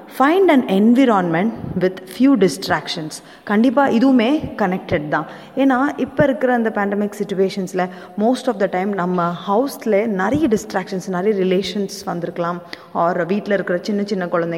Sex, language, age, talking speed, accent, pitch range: female, Tamil, 20-39, 135 wpm, native, 180-225 Hz